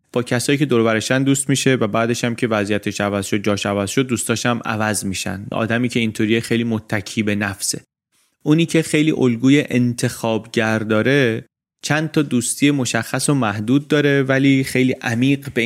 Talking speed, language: 165 wpm, Persian